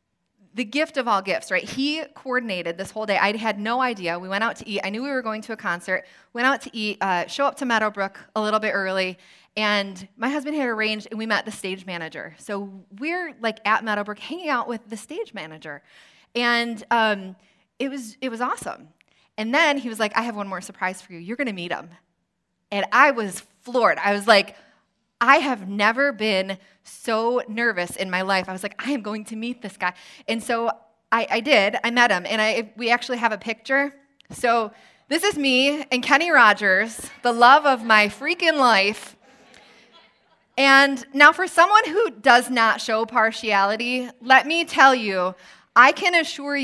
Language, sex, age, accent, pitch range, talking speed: English, female, 20-39, American, 200-260 Hz, 200 wpm